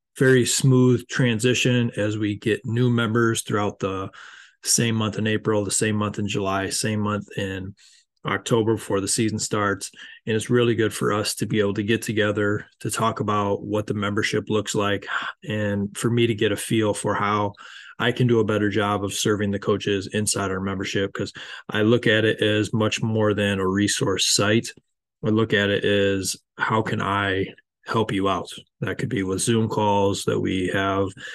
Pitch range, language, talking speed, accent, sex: 100-120 Hz, English, 195 wpm, American, male